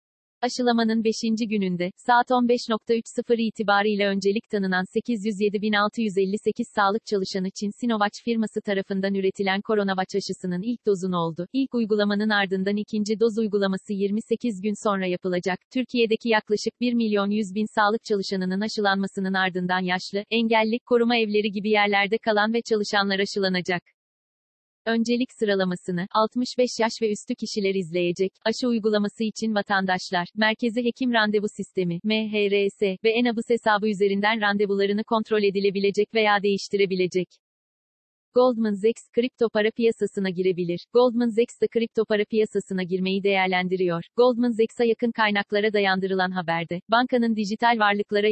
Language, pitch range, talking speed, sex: Turkish, 195-225 Hz, 120 wpm, female